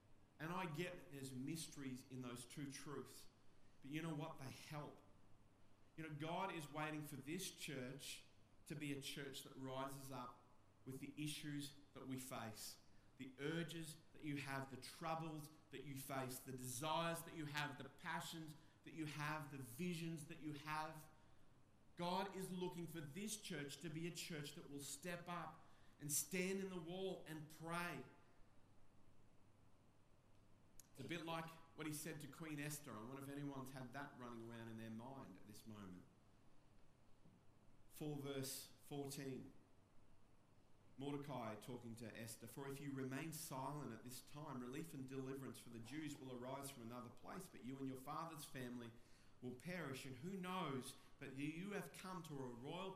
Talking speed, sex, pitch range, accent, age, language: 170 wpm, male, 115-155 Hz, Australian, 40-59, English